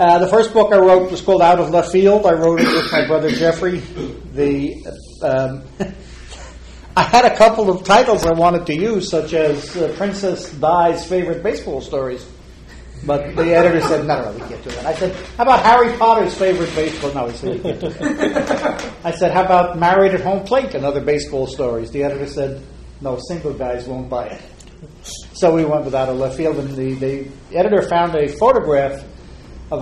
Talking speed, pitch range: 200 wpm, 130-170 Hz